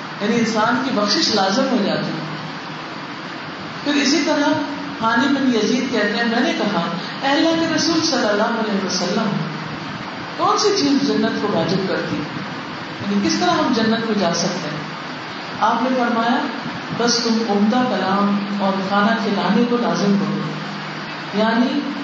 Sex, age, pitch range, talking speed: female, 40-59, 200-290 Hz, 155 wpm